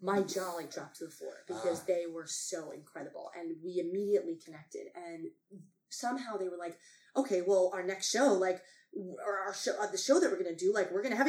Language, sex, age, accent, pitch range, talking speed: English, female, 20-39, American, 175-235 Hz, 230 wpm